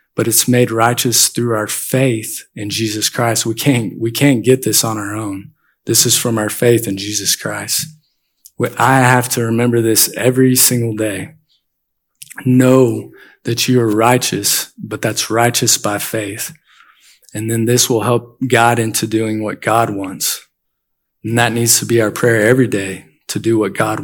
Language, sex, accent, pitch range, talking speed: English, male, American, 110-130 Hz, 170 wpm